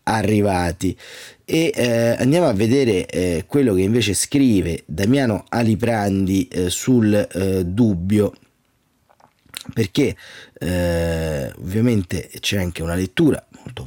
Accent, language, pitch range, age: native, Italian, 95-130 Hz, 30-49